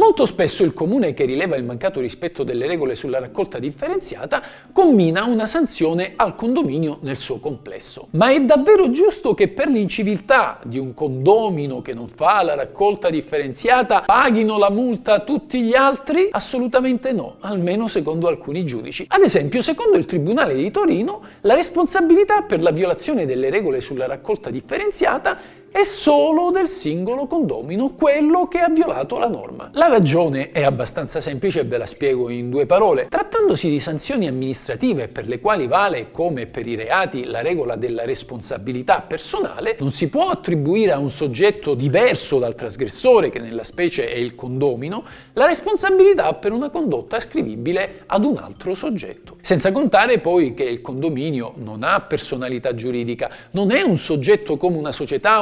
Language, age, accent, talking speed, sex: Italian, 50-69, native, 165 wpm, male